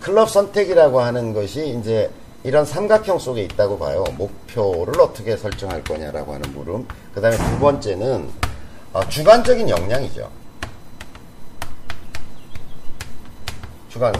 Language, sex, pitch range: Korean, male, 105-150 Hz